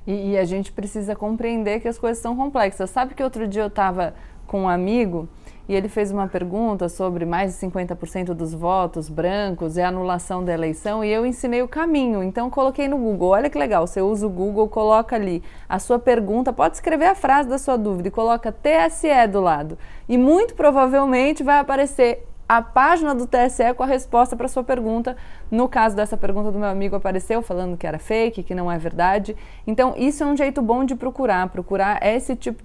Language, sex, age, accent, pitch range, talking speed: Portuguese, female, 20-39, Brazilian, 190-245 Hz, 210 wpm